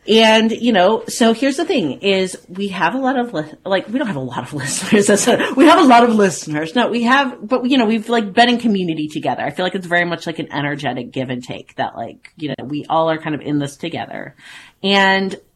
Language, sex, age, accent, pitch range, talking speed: English, female, 30-49, American, 145-205 Hz, 245 wpm